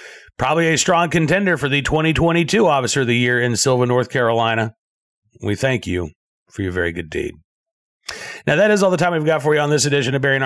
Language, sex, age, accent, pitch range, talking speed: English, male, 40-59, American, 125-170 Hz, 220 wpm